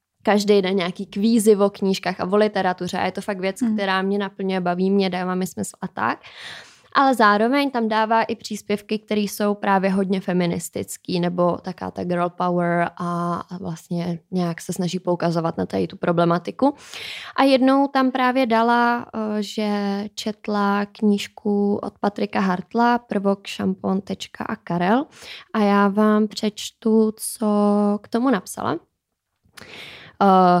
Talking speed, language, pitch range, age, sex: 145 wpm, Czech, 185-225 Hz, 20-39, female